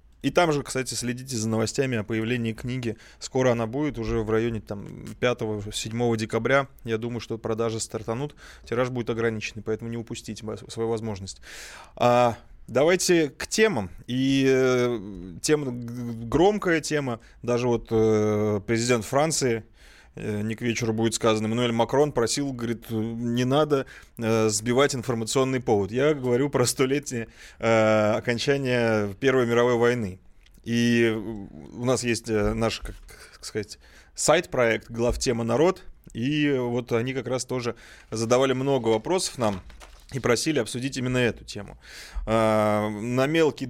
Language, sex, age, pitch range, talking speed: Russian, male, 20-39, 110-135 Hz, 135 wpm